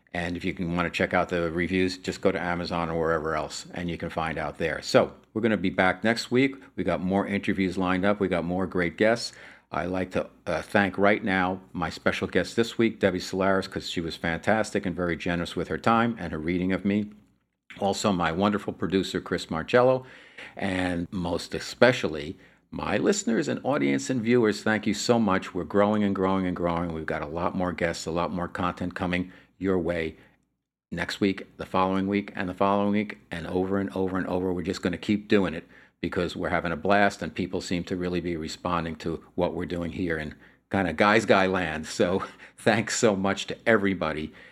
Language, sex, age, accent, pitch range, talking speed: English, male, 50-69, American, 85-100 Hz, 215 wpm